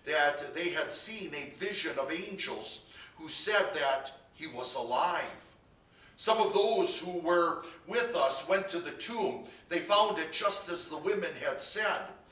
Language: English